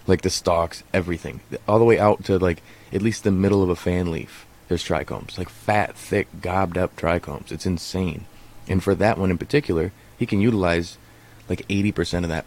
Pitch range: 85-105 Hz